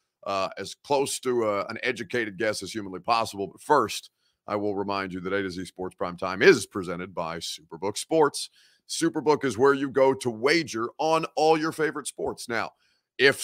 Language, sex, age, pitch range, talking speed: English, male, 30-49, 100-135 Hz, 190 wpm